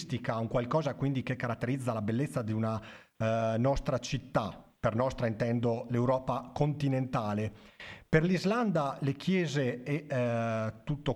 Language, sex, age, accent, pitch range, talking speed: Italian, male, 40-59, native, 120-145 Hz, 130 wpm